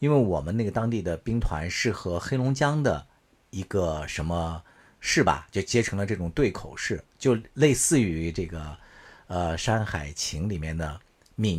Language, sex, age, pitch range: Chinese, male, 50-69, 85-120 Hz